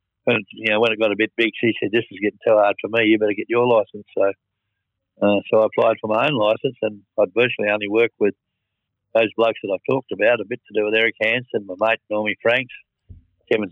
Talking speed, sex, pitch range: 245 wpm, male, 100-115 Hz